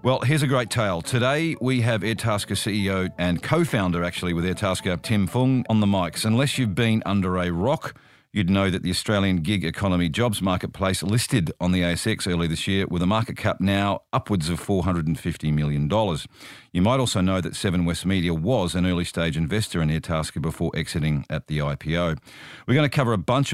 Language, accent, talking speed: English, Australian, 195 wpm